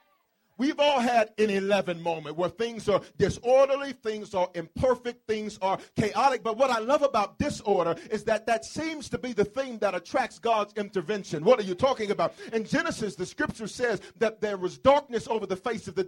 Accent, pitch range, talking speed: American, 195-255 Hz, 200 wpm